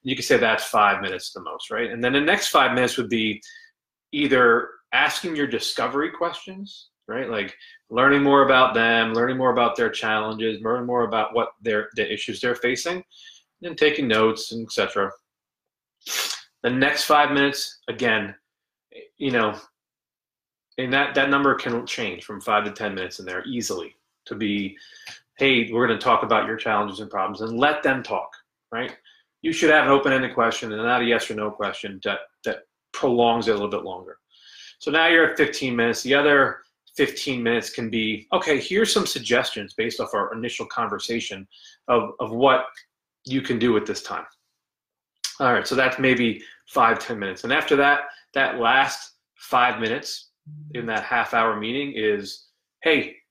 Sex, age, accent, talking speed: male, 30-49, American, 175 wpm